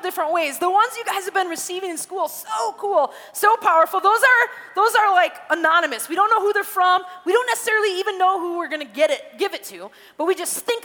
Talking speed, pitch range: 245 wpm, 280-380 Hz